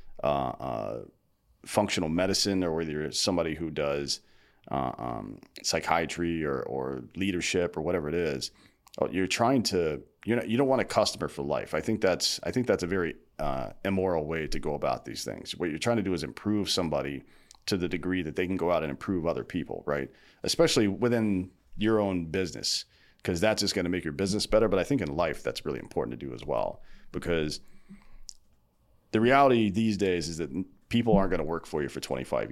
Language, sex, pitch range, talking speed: English, male, 80-105 Hz, 205 wpm